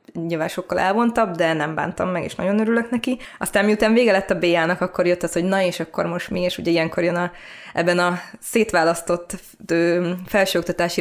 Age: 20-39